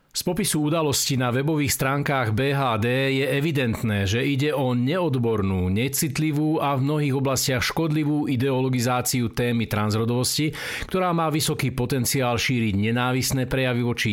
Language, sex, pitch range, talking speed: Slovak, male, 125-155 Hz, 125 wpm